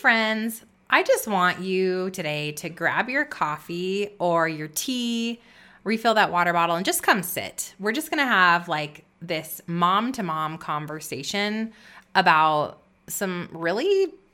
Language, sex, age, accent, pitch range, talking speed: English, female, 20-39, American, 165-215 Hz, 140 wpm